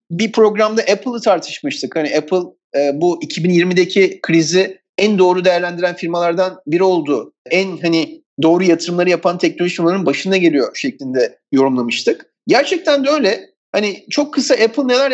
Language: Turkish